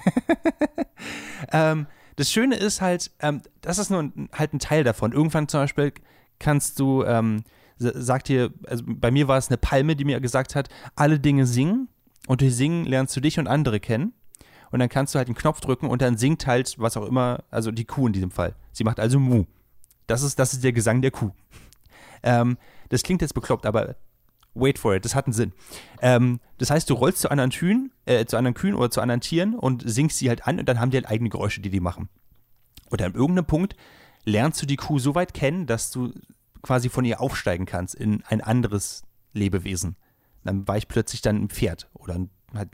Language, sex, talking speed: German, male, 220 wpm